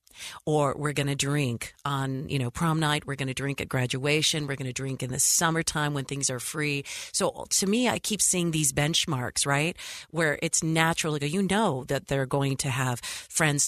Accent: American